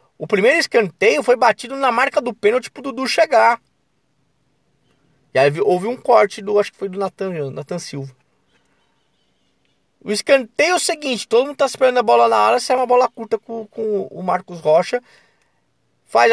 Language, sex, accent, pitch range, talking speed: Portuguese, male, Brazilian, 140-210 Hz, 175 wpm